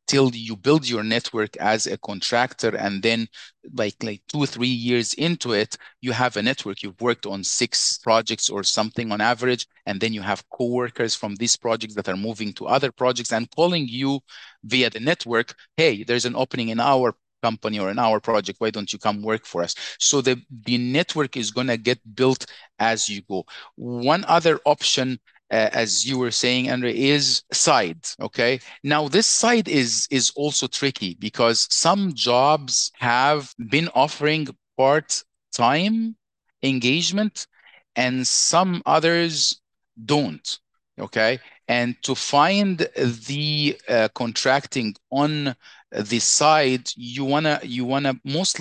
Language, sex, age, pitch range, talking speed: English, male, 40-59, 115-140 Hz, 160 wpm